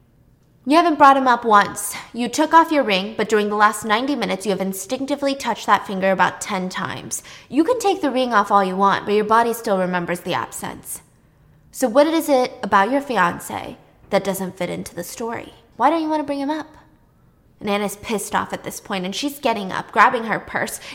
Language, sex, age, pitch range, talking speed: English, female, 20-39, 195-270 Hz, 220 wpm